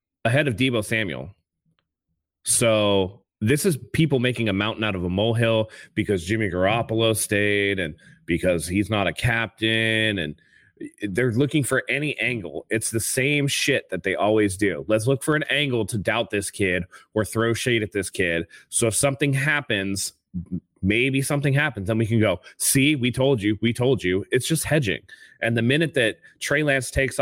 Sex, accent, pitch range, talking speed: male, American, 100-130 Hz, 180 wpm